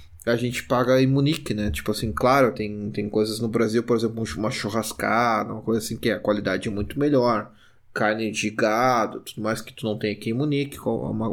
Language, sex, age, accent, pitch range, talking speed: Portuguese, male, 20-39, Brazilian, 110-130 Hz, 210 wpm